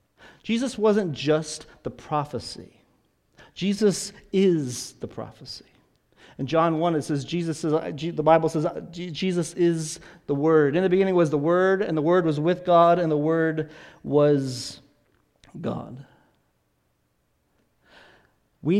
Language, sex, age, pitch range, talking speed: English, male, 50-69, 125-155 Hz, 130 wpm